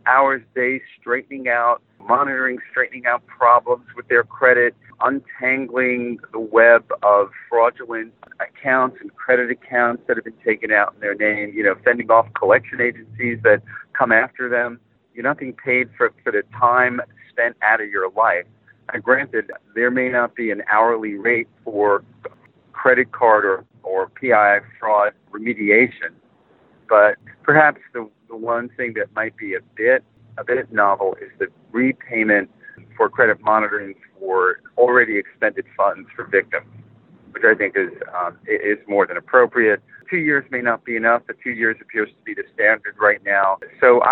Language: English